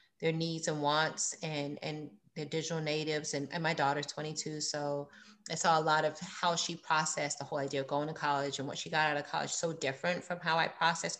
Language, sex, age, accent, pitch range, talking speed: English, female, 30-49, American, 155-190 Hz, 230 wpm